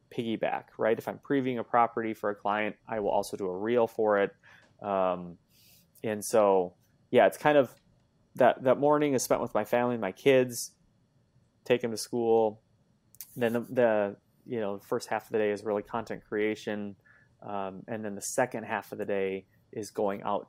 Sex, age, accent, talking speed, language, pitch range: male, 20-39, American, 200 wpm, English, 100-120 Hz